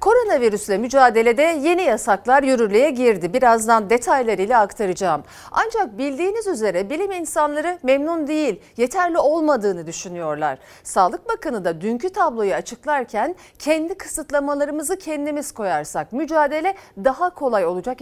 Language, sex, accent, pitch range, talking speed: Turkish, female, native, 215-310 Hz, 110 wpm